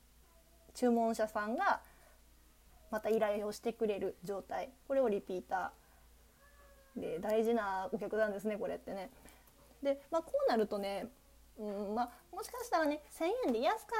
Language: Japanese